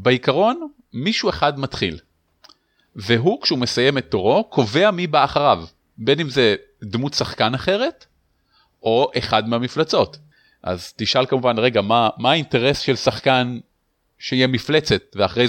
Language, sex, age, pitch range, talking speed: Hebrew, male, 30-49, 105-145 Hz, 130 wpm